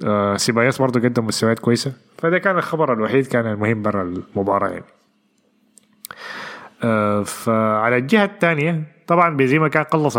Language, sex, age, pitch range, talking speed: Arabic, male, 20-39, 110-145 Hz, 125 wpm